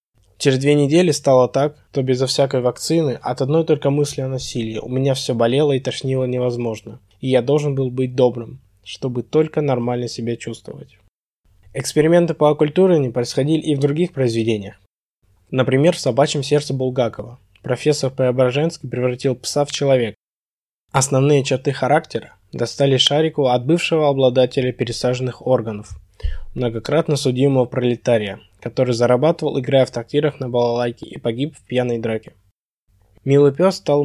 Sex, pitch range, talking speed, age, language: male, 120-140 Hz, 145 wpm, 20-39, Russian